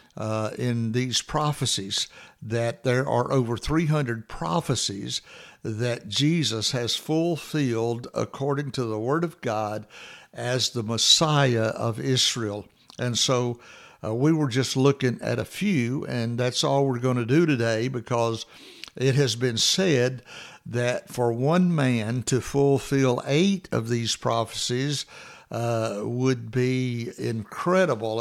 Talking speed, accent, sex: 130 wpm, American, male